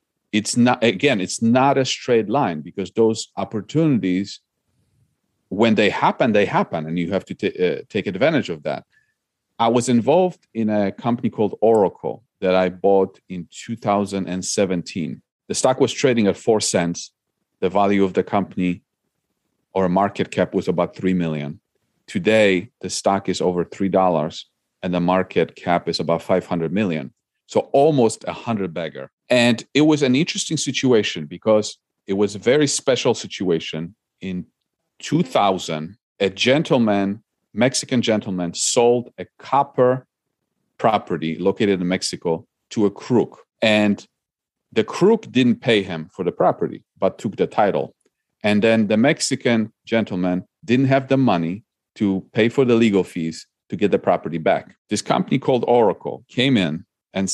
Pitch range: 90-120 Hz